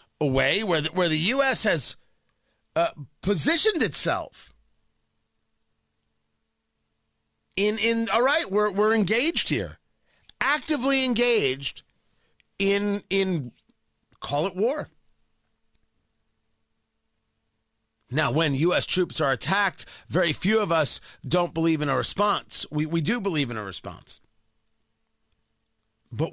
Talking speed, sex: 110 wpm, male